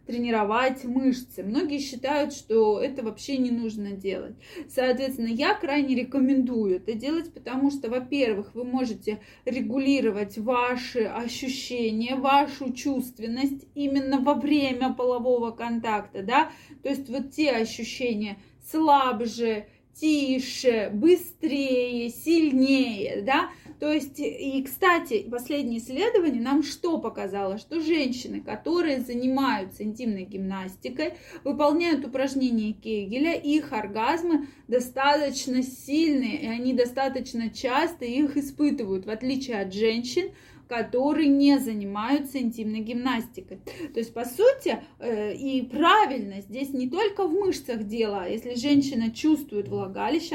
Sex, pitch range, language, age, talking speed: female, 230-285 Hz, Russian, 20-39, 115 wpm